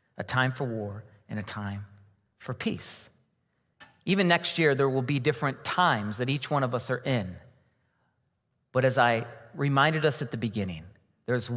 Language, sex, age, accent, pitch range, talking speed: English, male, 40-59, American, 120-170 Hz, 170 wpm